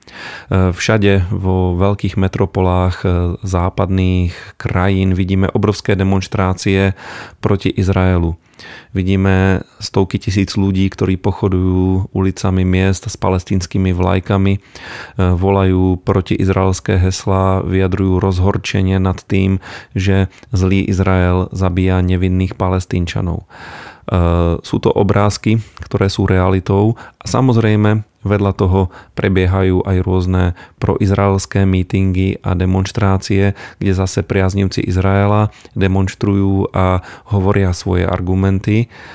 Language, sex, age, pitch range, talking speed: Slovak, male, 30-49, 95-100 Hz, 95 wpm